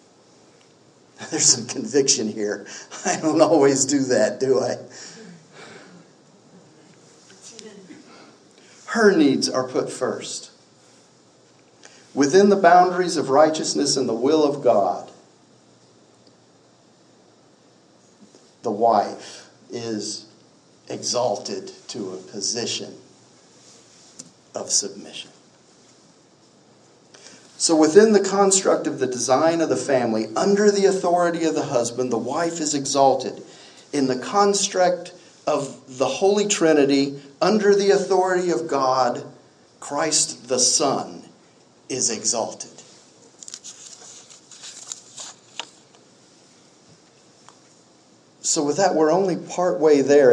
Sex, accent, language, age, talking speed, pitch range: male, American, English, 50-69, 95 wpm, 125-180 Hz